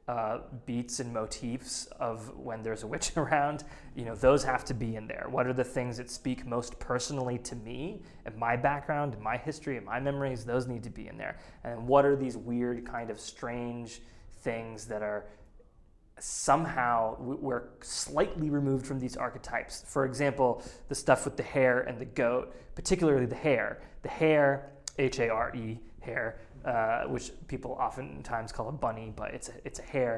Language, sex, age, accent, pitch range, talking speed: English, male, 20-39, American, 120-140 Hz, 180 wpm